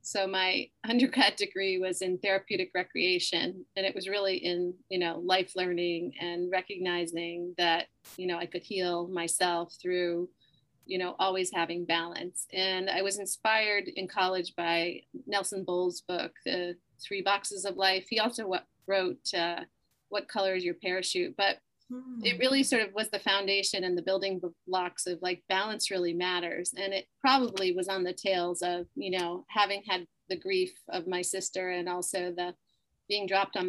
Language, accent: English, American